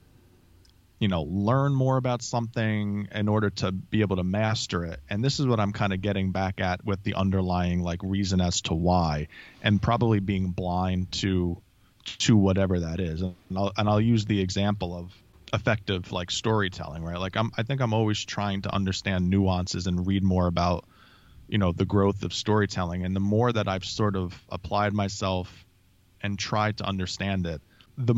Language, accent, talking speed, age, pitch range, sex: English, American, 185 wpm, 20-39, 95-115 Hz, male